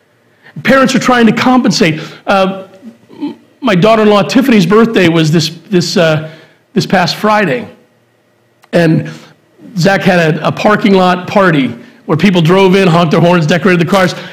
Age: 40-59